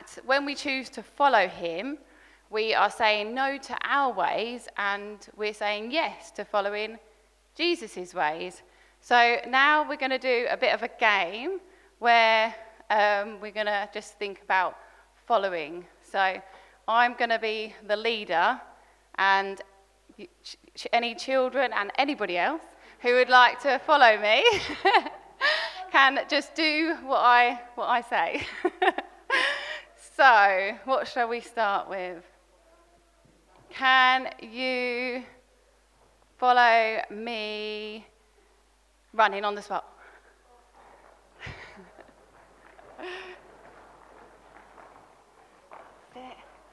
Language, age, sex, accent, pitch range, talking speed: English, 20-39, female, British, 210-270 Hz, 105 wpm